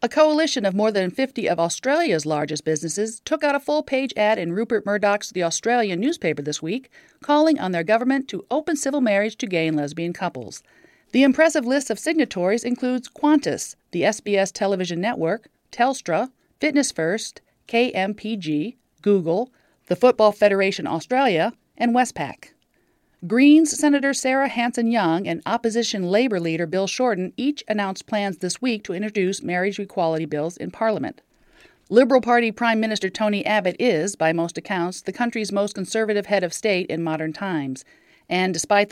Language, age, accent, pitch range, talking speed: English, 40-59, American, 170-240 Hz, 160 wpm